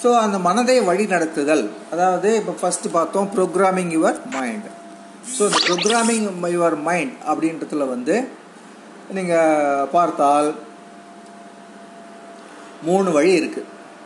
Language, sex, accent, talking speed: Tamil, male, native, 95 wpm